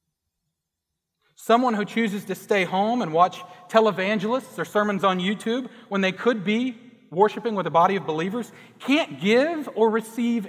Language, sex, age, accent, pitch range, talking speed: English, male, 40-59, American, 165-225 Hz, 155 wpm